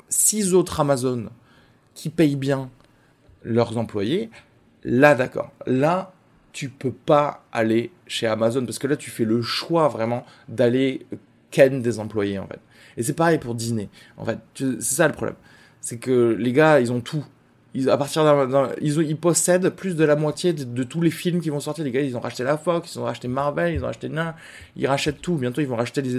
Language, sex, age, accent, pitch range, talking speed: French, male, 20-39, French, 125-175 Hz, 195 wpm